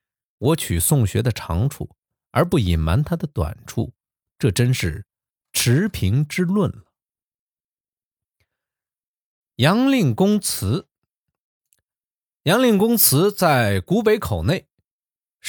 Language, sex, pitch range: Chinese, male, 105-155 Hz